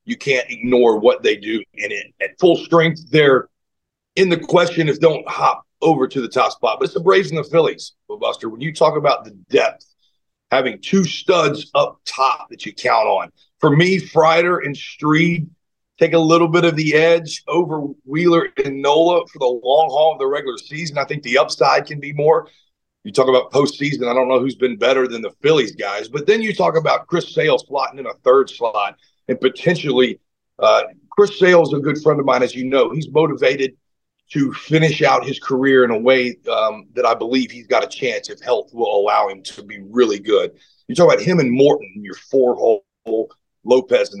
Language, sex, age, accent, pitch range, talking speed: English, male, 40-59, American, 135-200 Hz, 210 wpm